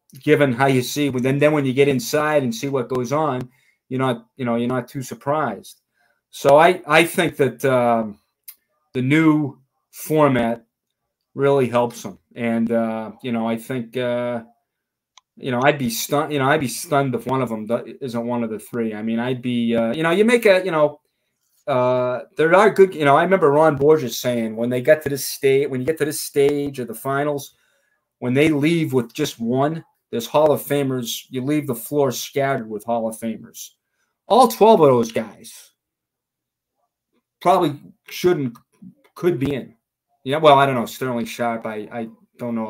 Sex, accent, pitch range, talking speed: male, American, 120-145 Hz, 200 wpm